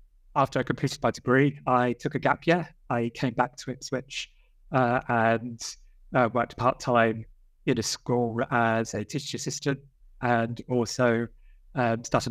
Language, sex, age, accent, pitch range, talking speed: English, male, 30-49, British, 115-135 Hz, 155 wpm